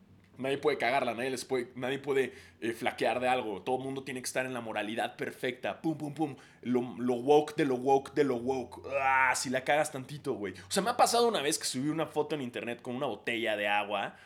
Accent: Mexican